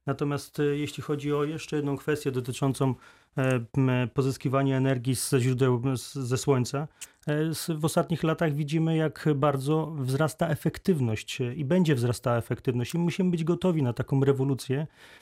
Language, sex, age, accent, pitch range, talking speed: Polish, male, 30-49, native, 135-165 Hz, 130 wpm